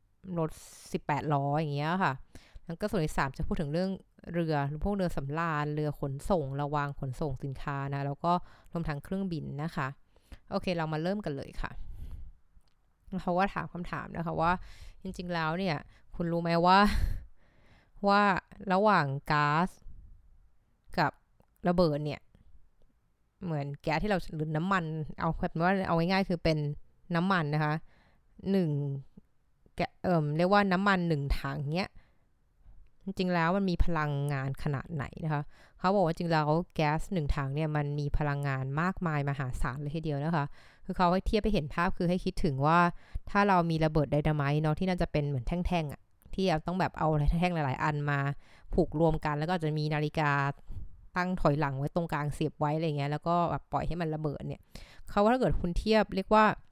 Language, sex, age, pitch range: Thai, female, 20-39, 140-180 Hz